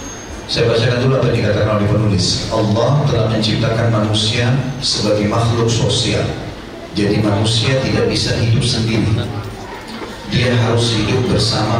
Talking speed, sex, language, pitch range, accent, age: 115 wpm, male, English, 105-120 Hz, Indonesian, 40-59